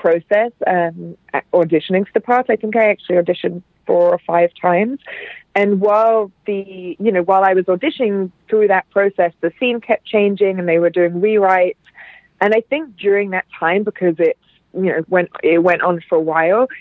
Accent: British